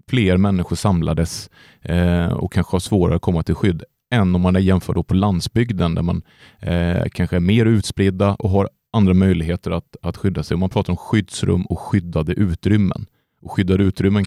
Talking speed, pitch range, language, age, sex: 180 wpm, 90-115 Hz, Swedish, 30-49, male